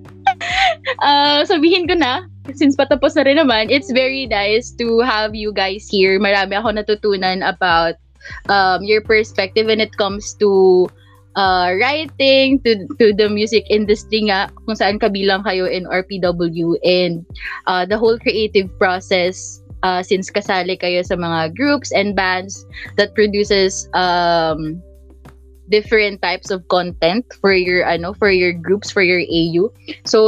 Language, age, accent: Filipino, 20-39, native